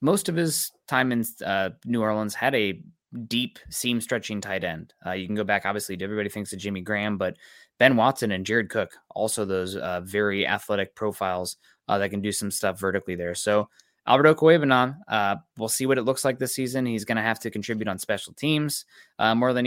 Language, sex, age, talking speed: English, male, 20-39, 215 wpm